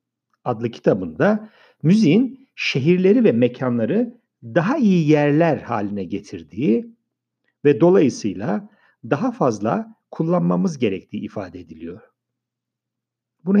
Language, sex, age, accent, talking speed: Turkish, male, 60-79, native, 90 wpm